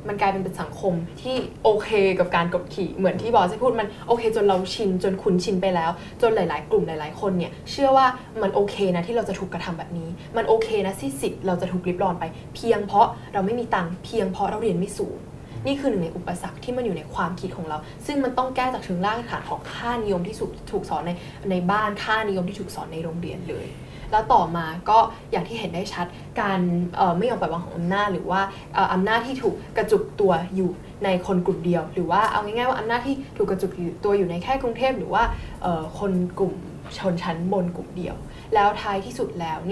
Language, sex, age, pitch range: Thai, female, 10-29, 175-210 Hz